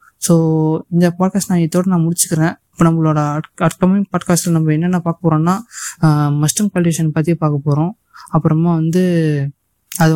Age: 20-39